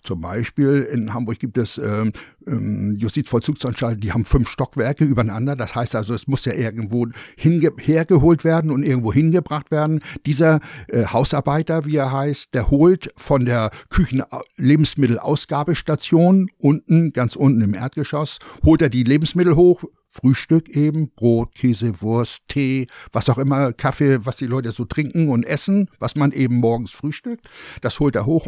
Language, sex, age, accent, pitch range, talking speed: German, male, 60-79, German, 120-155 Hz, 160 wpm